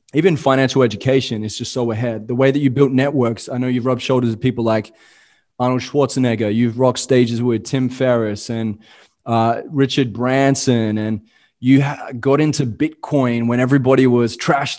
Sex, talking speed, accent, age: male, 175 wpm, Australian, 20-39